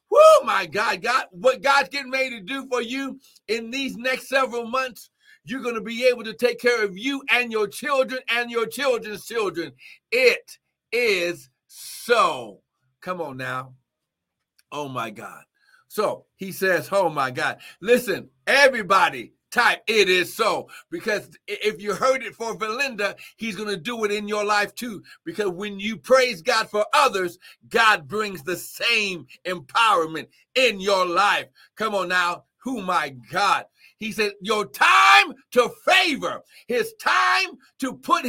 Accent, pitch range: American, 200-270 Hz